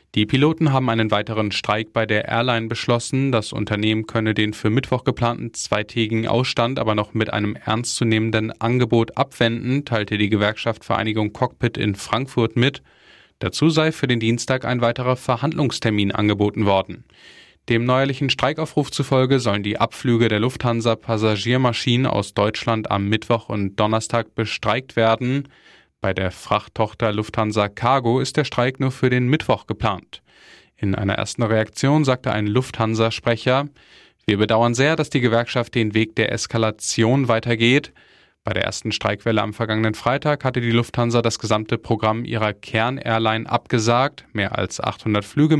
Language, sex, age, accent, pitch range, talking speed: German, male, 10-29, German, 110-125 Hz, 145 wpm